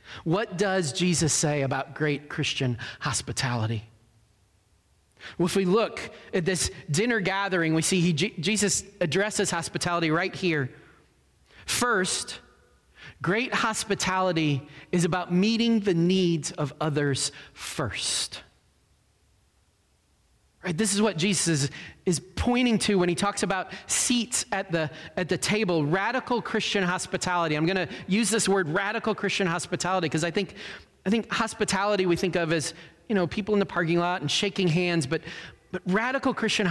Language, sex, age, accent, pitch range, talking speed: English, male, 30-49, American, 150-200 Hz, 145 wpm